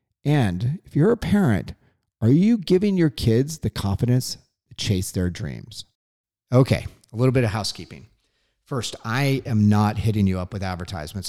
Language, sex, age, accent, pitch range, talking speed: English, male, 40-59, American, 105-135 Hz, 165 wpm